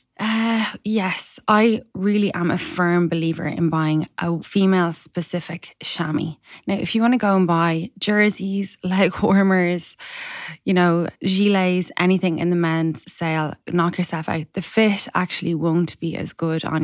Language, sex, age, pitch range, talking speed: English, female, 20-39, 160-190 Hz, 155 wpm